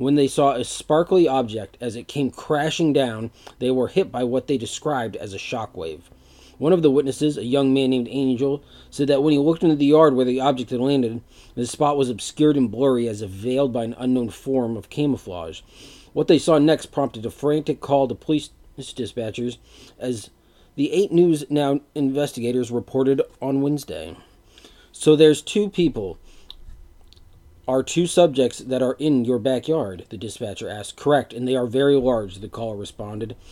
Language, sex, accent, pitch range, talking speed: English, male, American, 115-145 Hz, 185 wpm